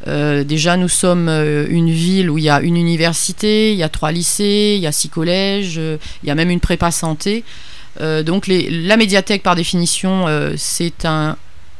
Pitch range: 165-205 Hz